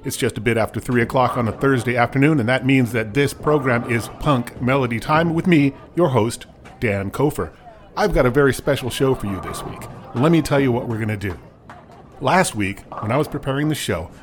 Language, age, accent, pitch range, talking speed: English, 40-59, American, 110-150 Hz, 230 wpm